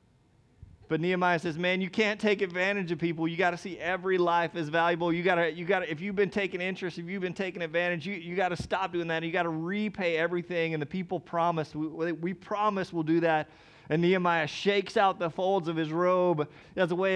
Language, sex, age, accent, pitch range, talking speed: English, male, 30-49, American, 140-180 Hz, 225 wpm